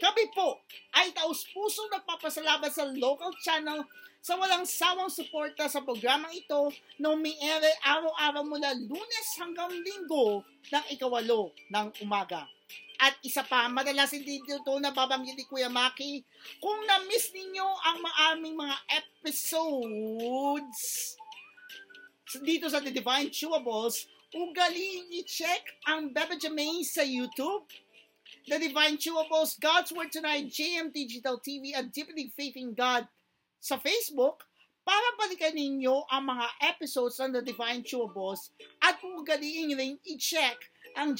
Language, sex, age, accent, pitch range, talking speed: Filipino, male, 40-59, native, 265-345 Hz, 130 wpm